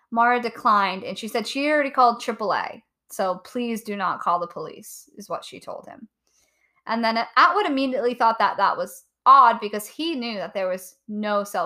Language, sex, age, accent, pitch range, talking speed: English, female, 10-29, American, 200-255 Hz, 195 wpm